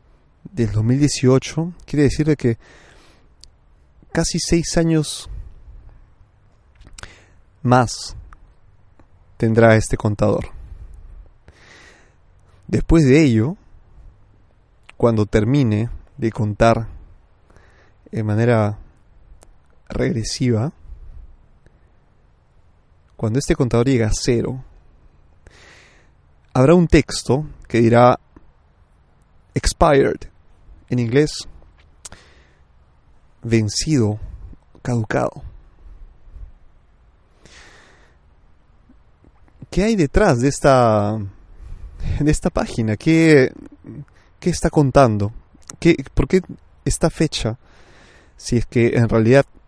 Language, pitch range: Spanish, 80-125 Hz